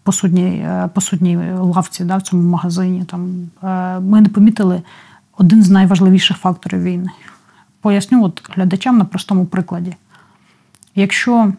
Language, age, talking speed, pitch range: Ukrainian, 30-49, 120 wpm, 180-195 Hz